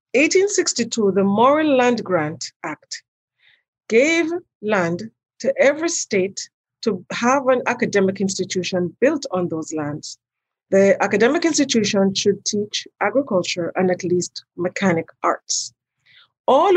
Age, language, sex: 30-49, English, female